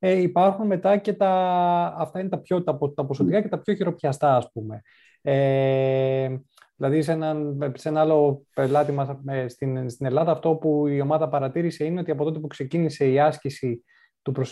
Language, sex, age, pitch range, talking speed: Greek, male, 20-39, 140-185 Hz, 180 wpm